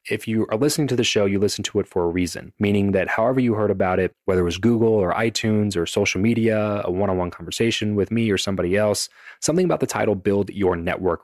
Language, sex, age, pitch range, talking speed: English, male, 20-39, 95-110 Hz, 240 wpm